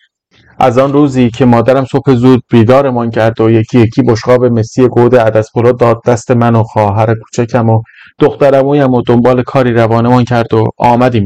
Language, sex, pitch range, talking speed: Persian, male, 115-145 Hz, 175 wpm